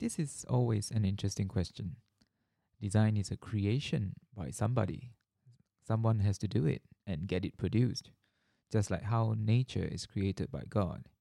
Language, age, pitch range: English, 20-39, 100-130 Hz